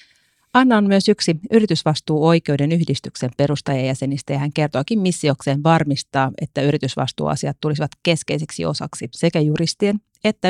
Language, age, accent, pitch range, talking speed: Finnish, 30-49, native, 145-190 Hz, 120 wpm